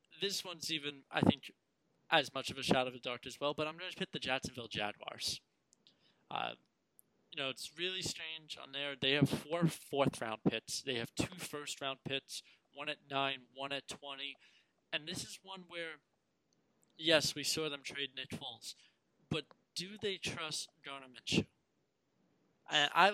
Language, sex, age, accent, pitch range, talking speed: English, male, 20-39, American, 125-160 Hz, 175 wpm